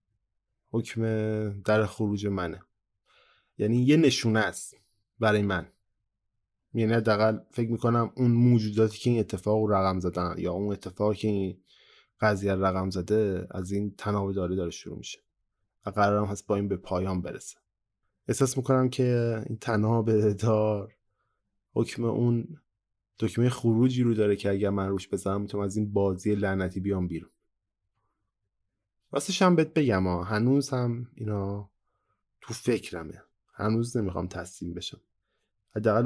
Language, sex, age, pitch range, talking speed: Persian, male, 20-39, 100-115 Hz, 135 wpm